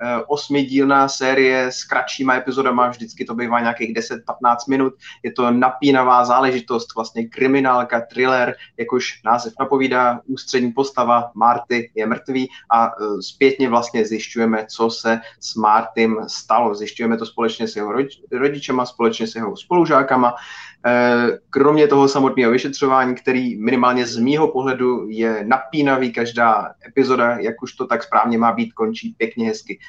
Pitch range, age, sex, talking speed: 115-130 Hz, 30-49, male, 135 wpm